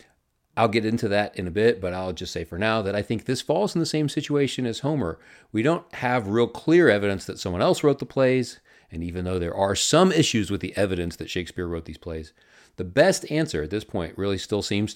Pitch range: 90-130 Hz